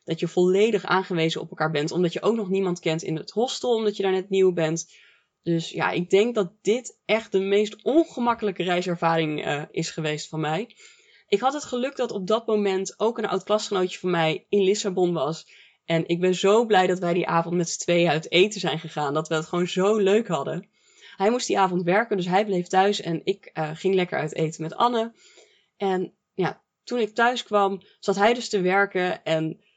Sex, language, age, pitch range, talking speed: female, English, 20-39, 165-210 Hz, 215 wpm